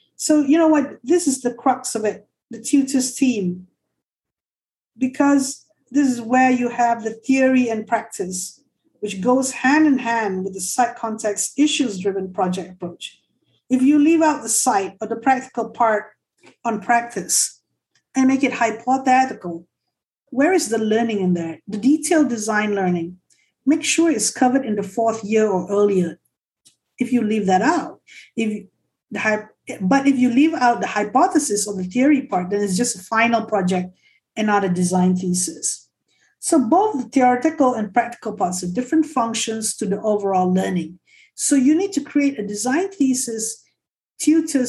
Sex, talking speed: female, 170 wpm